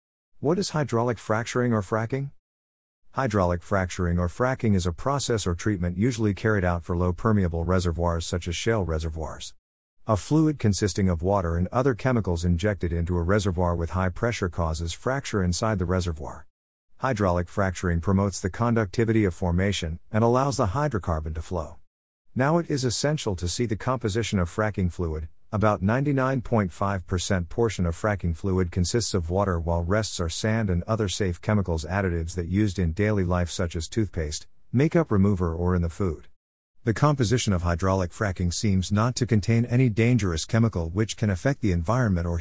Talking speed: 170 wpm